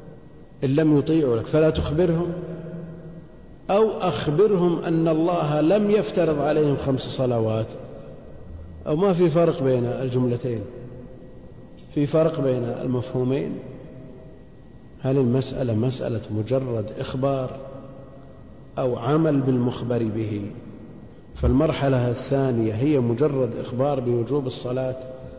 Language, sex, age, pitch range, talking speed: Arabic, male, 50-69, 125-150 Hz, 95 wpm